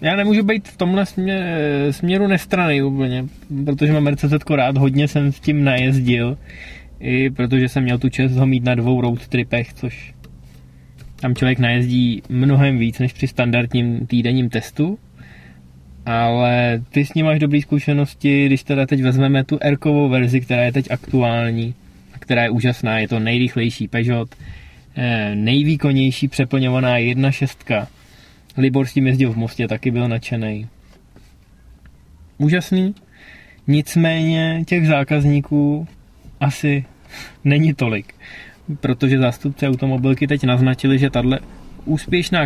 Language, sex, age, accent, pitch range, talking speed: Czech, male, 20-39, native, 120-145 Hz, 130 wpm